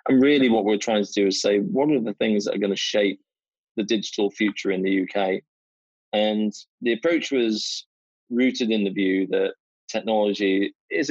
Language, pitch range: English, 100-115 Hz